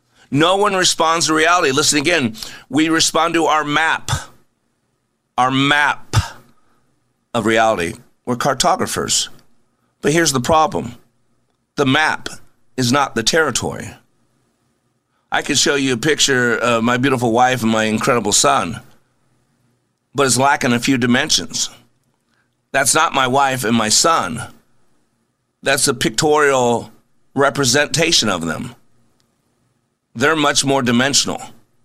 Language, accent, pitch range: English, American, 120-150 Hz